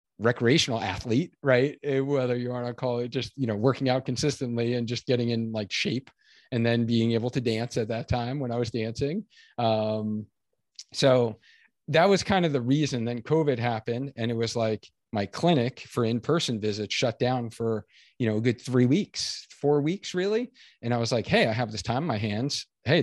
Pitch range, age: 115-145 Hz, 40-59